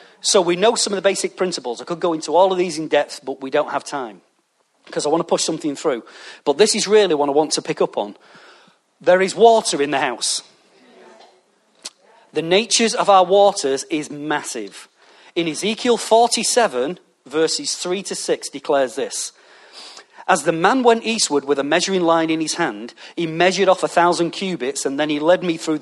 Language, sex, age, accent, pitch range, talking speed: English, male, 40-59, British, 155-195 Hz, 200 wpm